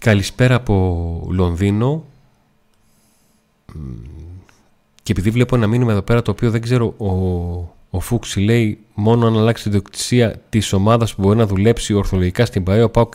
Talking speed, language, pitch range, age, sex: 150 wpm, Greek, 95-125 Hz, 30-49, male